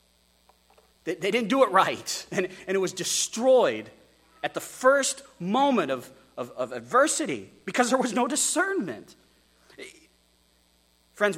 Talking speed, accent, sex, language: 110 wpm, American, male, English